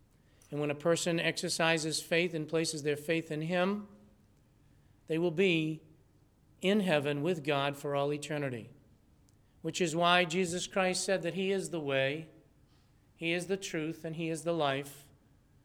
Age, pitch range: 40-59, 135-165 Hz